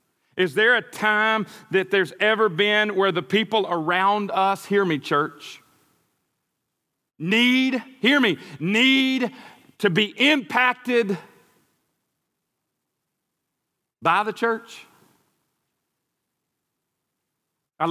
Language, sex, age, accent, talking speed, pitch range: English, male, 40-59, American, 90 wpm, 165-230 Hz